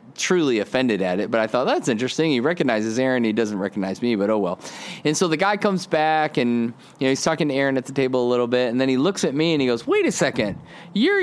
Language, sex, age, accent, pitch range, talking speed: English, male, 30-49, American, 140-225 Hz, 275 wpm